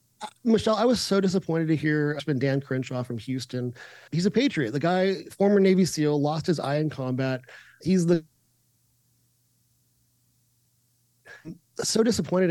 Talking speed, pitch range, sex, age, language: 145 wpm, 130-170 Hz, male, 30-49, English